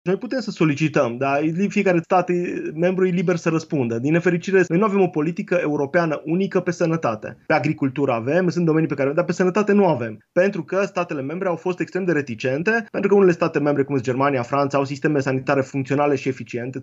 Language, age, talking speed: Romanian, 20-39, 215 wpm